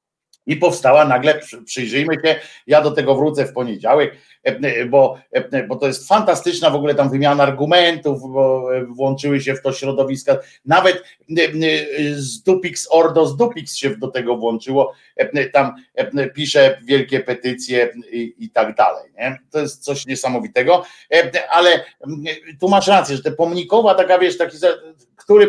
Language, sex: Polish, male